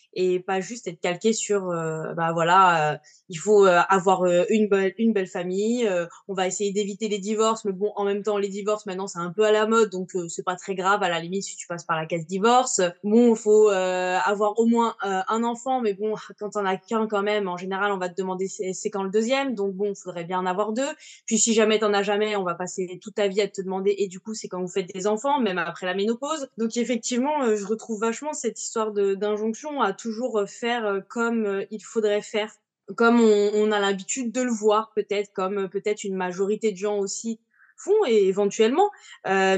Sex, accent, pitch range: female, French, 190-225 Hz